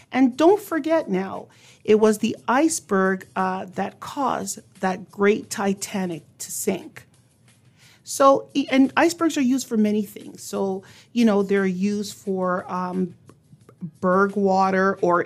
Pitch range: 185-245 Hz